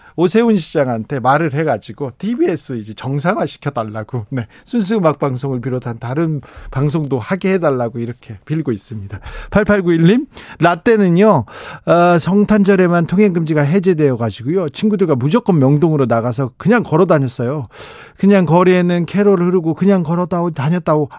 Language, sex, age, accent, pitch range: Korean, male, 40-59, native, 130-180 Hz